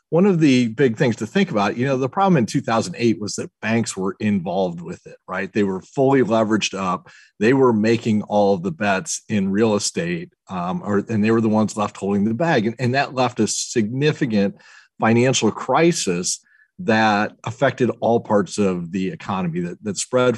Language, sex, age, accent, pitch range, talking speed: English, male, 40-59, American, 105-145 Hz, 195 wpm